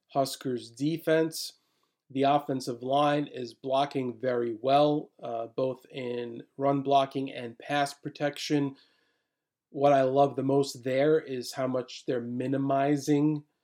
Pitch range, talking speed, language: 130-150 Hz, 125 wpm, English